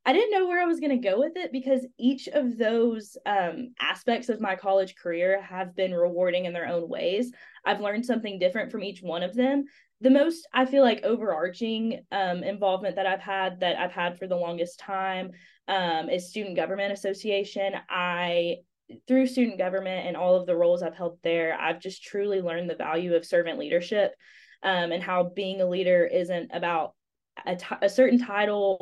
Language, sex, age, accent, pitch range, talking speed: English, female, 20-39, American, 175-225 Hz, 195 wpm